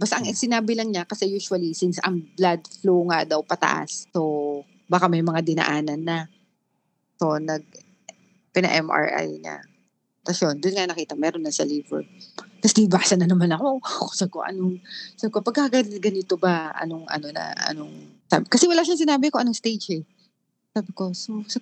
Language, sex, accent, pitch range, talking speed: Filipino, female, native, 175-225 Hz, 175 wpm